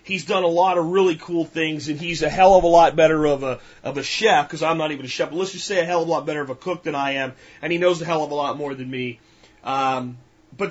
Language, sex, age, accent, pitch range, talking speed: English, male, 30-49, American, 145-180 Hz, 315 wpm